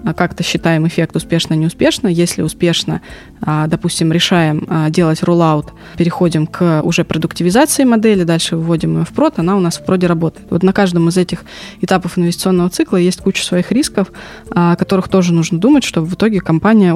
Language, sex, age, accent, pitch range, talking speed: Russian, female, 20-39, native, 170-195 Hz, 165 wpm